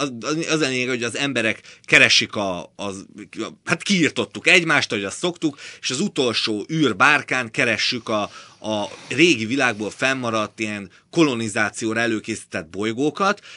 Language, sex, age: Hungarian, male, 30-49